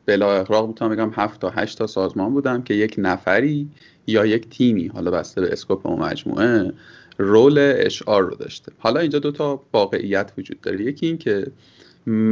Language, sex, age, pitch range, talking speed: Persian, male, 30-49, 105-140 Hz, 160 wpm